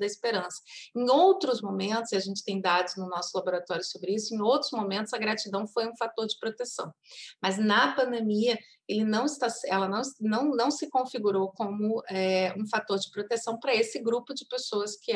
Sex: female